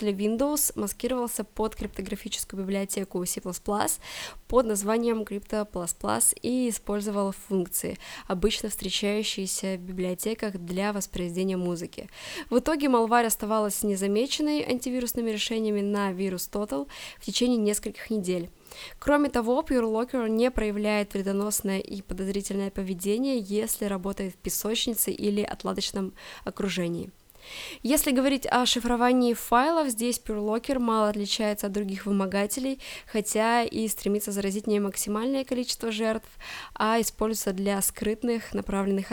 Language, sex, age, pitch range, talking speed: Russian, female, 20-39, 195-230 Hz, 115 wpm